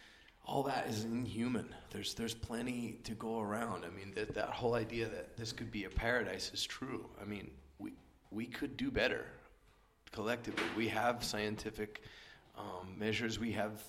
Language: German